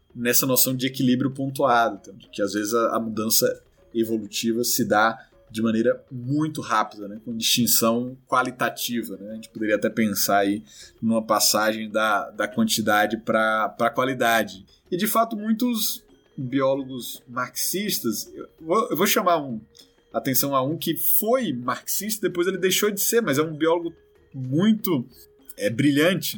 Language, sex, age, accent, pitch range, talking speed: Portuguese, male, 20-39, Brazilian, 115-170 Hz, 145 wpm